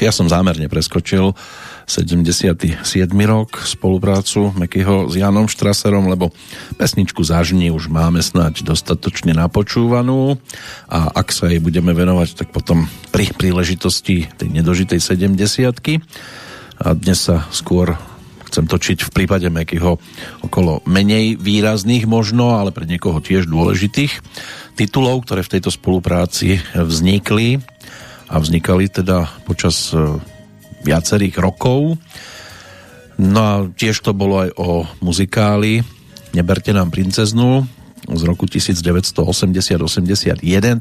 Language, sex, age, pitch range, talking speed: Slovak, male, 50-69, 85-105 Hz, 115 wpm